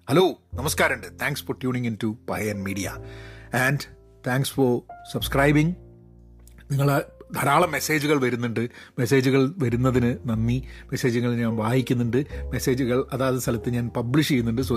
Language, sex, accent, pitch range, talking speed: Malayalam, male, native, 120-155 Hz, 140 wpm